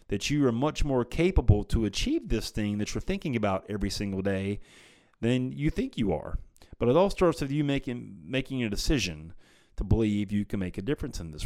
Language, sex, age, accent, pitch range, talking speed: English, male, 30-49, American, 95-130 Hz, 215 wpm